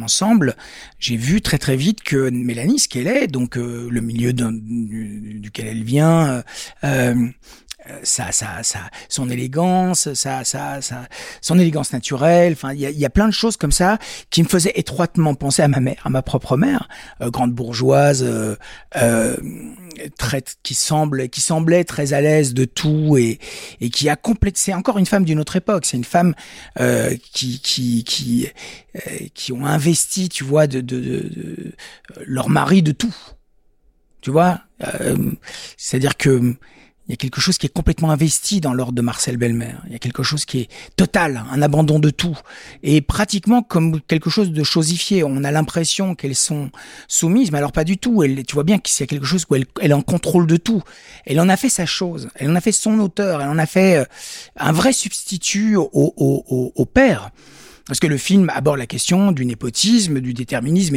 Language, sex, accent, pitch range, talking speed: French, male, French, 130-180 Hz, 200 wpm